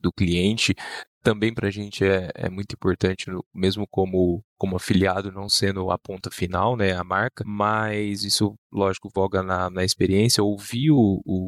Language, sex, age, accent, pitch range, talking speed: Portuguese, male, 10-29, Brazilian, 95-115 Hz, 160 wpm